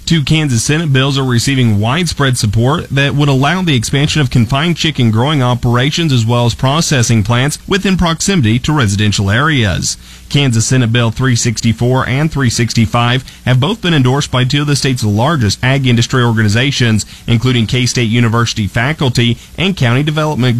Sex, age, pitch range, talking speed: male, 30-49, 115-140 Hz, 155 wpm